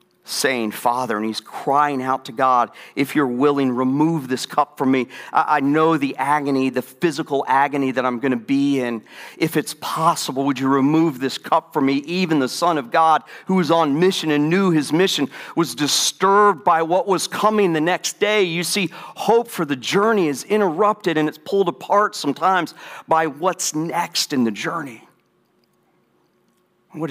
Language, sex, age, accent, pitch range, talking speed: English, male, 50-69, American, 130-170 Hz, 180 wpm